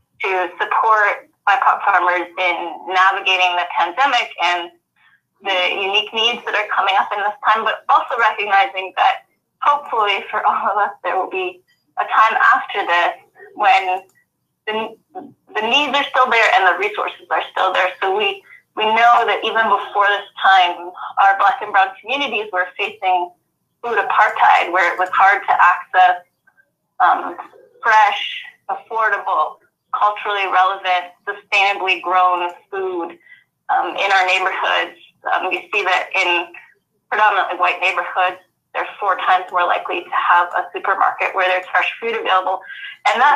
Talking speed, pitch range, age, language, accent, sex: 150 wpm, 185-240 Hz, 20-39, English, American, female